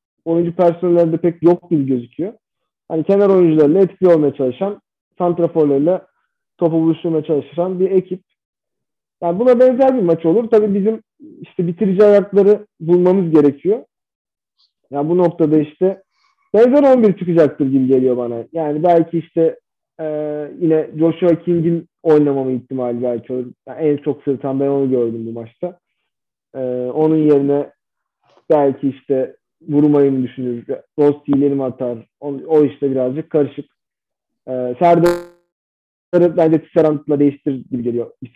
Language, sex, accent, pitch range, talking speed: Turkish, male, native, 140-175 Hz, 135 wpm